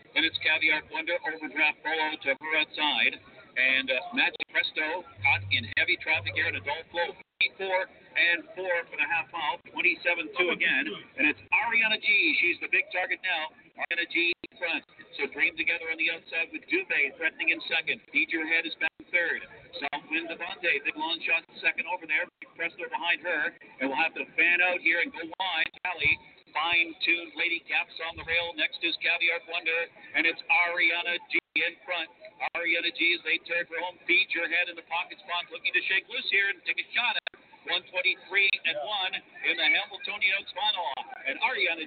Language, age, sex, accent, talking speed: English, 50-69, male, American, 190 wpm